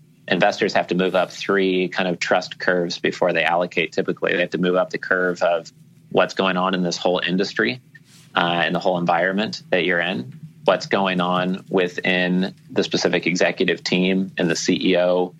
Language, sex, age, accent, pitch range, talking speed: English, male, 30-49, American, 90-105 Hz, 185 wpm